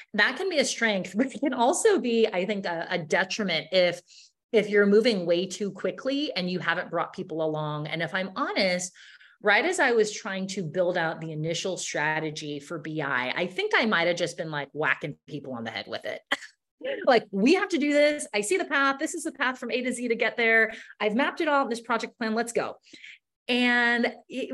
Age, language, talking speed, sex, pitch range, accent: 30-49, English, 225 wpm, female, 165-230 Hz, American